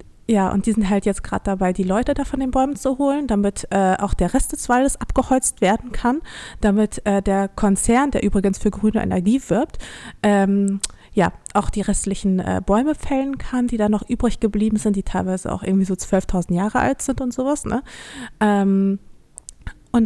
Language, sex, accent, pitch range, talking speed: German, female, German, 195-235 Hz, 195 wpm